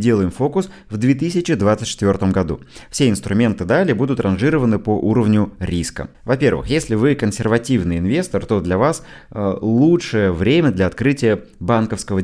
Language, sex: Russian, male